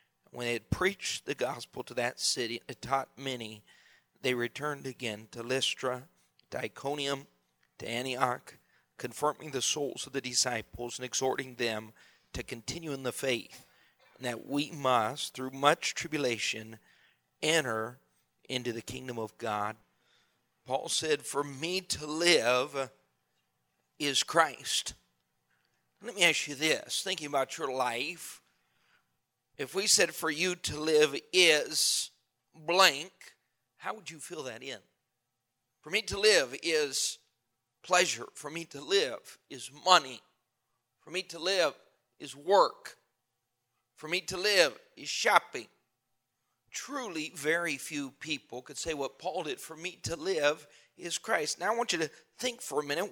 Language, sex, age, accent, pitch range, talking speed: English, male, 40-59, American, 115-160 Hz, 145 wpm